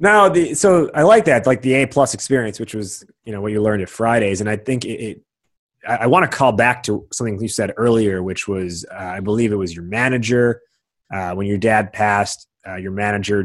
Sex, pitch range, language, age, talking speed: male, 105-140 Hz, English, 20-39, 230 wpm